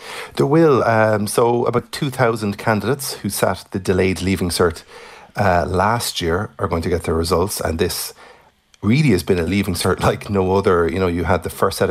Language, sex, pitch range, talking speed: English, male, 90-115 Hz, 200 wpm